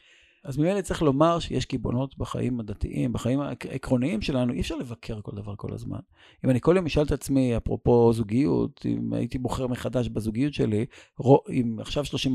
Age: 50-69